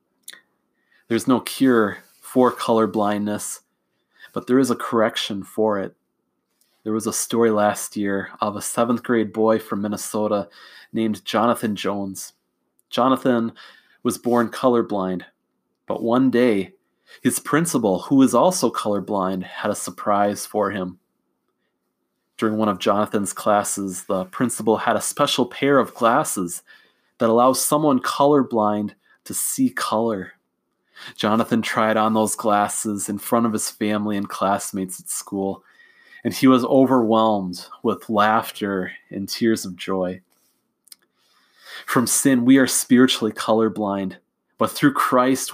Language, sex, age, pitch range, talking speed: English, male, 30-49, 105-130 Hz, 130 wpm